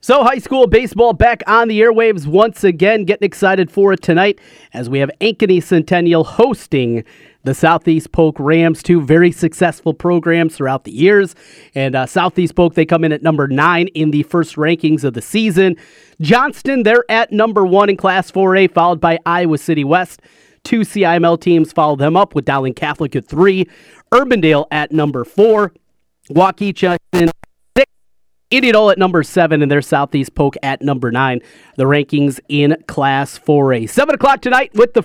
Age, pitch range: 30-49, 145-190 Hz